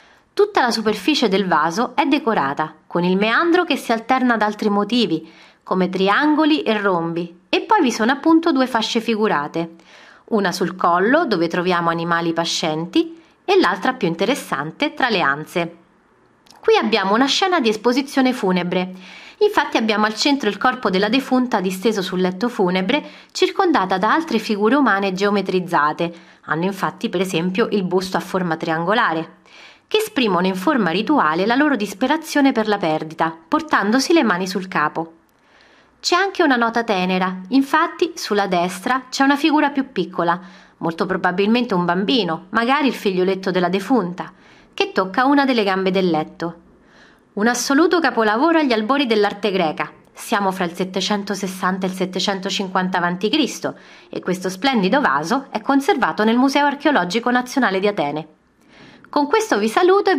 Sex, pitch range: female, 185-270 Hz